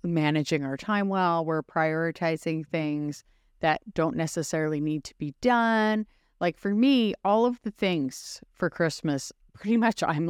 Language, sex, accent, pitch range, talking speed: English, female, American, 150-200 Hz, 150 wpm